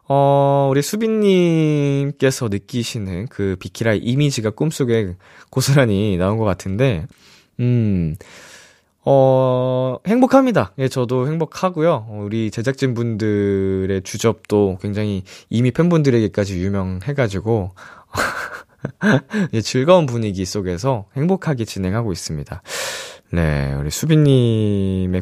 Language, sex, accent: Korean, male, native